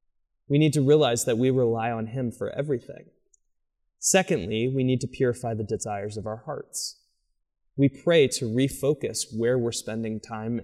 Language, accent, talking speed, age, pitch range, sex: English, American, 165 wpm, 20-39, 115-150 Hz, male